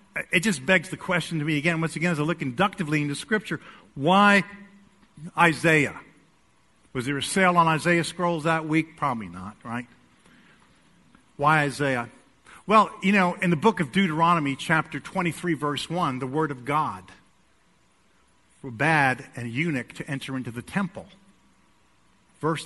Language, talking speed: English, 155 wpm